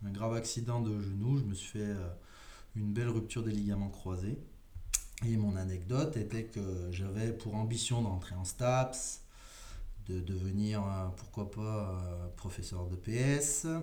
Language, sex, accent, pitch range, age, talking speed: French, male, French, 100-125 Hz, 20-39, 145 wpm